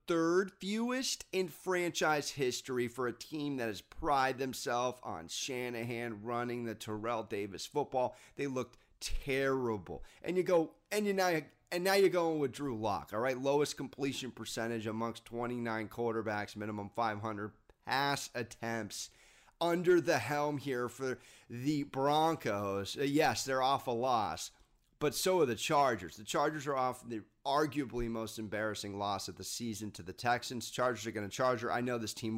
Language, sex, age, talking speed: English, male, 30-49, 165 wpm